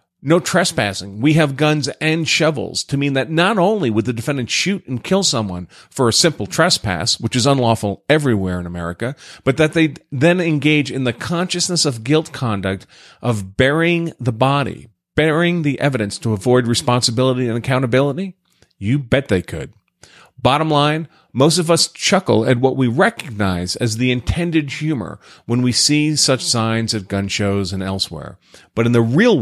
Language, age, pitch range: English, 40-59, 115-160 Hz